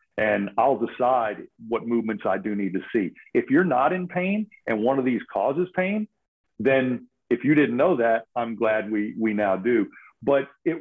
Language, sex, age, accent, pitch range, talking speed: English, male, 50-69, American, 115-145 Hz, 195 wpm